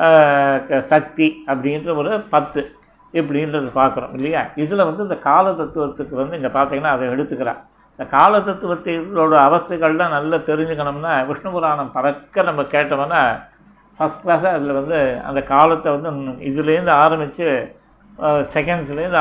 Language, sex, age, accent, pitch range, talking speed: Tamil, male, 60-79, native, 140-170 Hz, 115 wpm